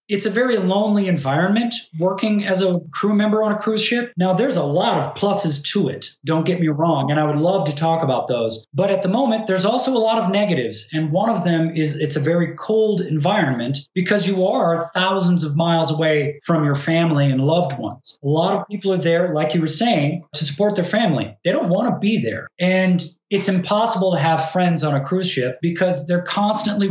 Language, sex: English, male